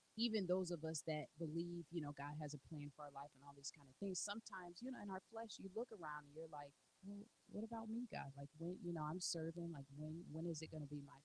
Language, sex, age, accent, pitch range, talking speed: English, female, 30-49, American, 145-170 Hz, 285 wpm